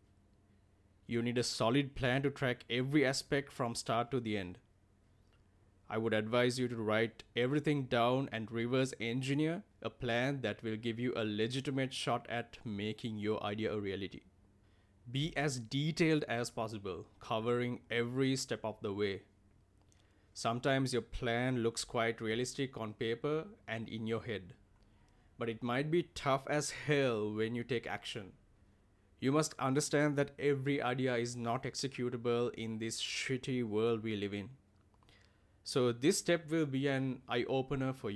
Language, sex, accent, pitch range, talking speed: English, male, Indian, 105-135 Hz, 155 wpm